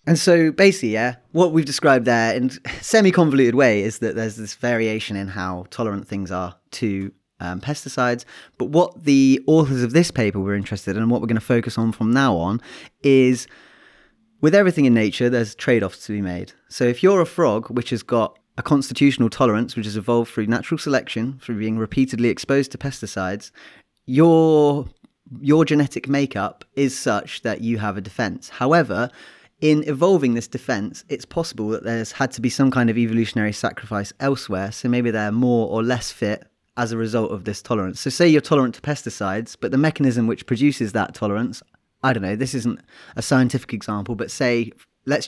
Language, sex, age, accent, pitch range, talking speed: English, male, 30-49, British, 110-135 Hz, 190 wpm